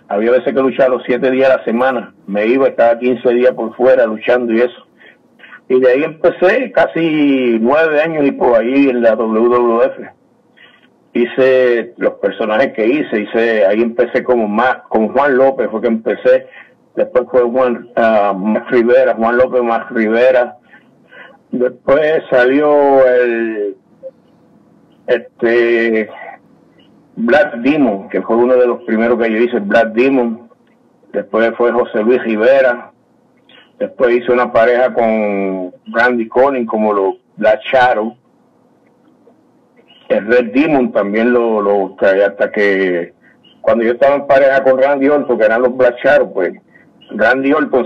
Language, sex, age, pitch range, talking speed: Spanish, male, 60-79, 115-135 Hz, 145 wpm